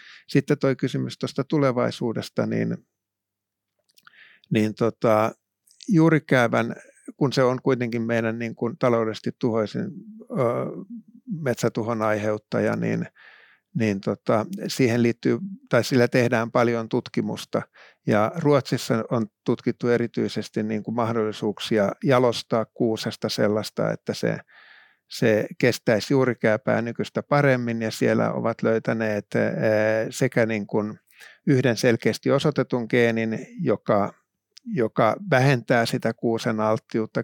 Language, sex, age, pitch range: Finnish, male, 50-69, 110-130 Hz